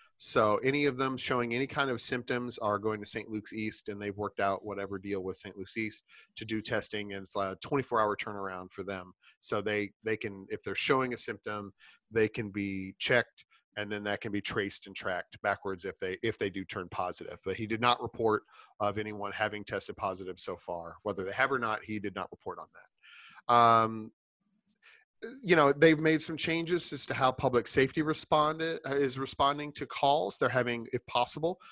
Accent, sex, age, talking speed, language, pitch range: American, male, 30-49, 200 wpm, English, 105-135 Hz